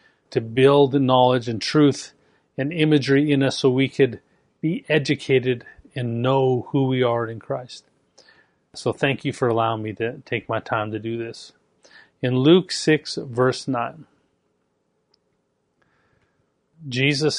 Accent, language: American, English